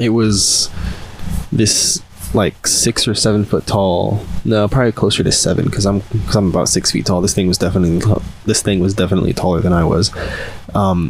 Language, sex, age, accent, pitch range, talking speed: English, male, 20-39, American, 90-110 Hz, 190 wpm